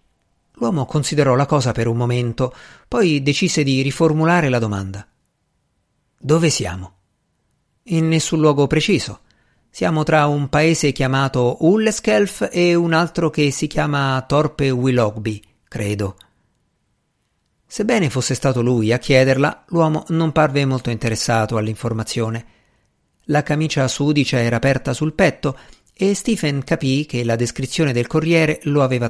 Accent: native